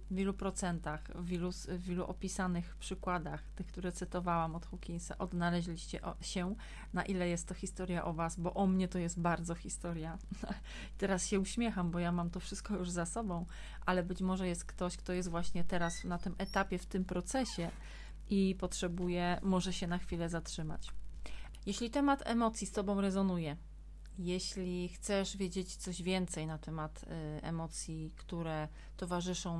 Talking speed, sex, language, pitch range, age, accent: 155 wpm, female, Polish, 170-190 Hz, 30-49, native